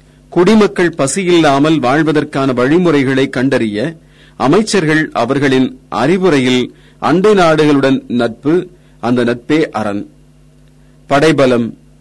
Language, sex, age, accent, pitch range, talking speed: Tamil, male, 40-59, native, 120-155 Hz, 75 wpm